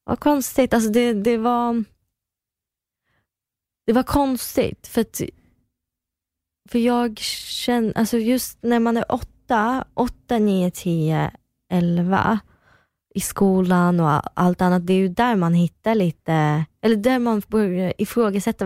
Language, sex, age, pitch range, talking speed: Swedish, female, 20-39, 160-210 Hz, 130 wpm